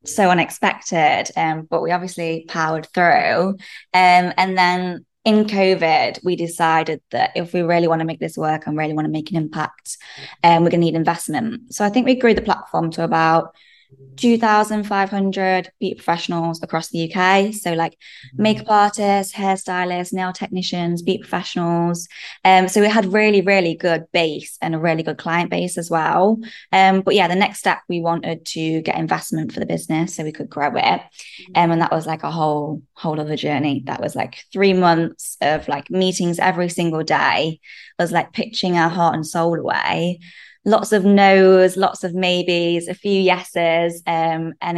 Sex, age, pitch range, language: female, 20-39, 165-190 Hz, English